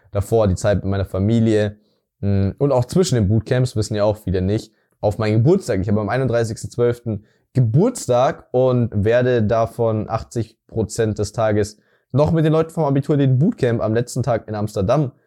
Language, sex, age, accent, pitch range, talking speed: German, male, 20-39, German, 105-130 Hz, 170 wpm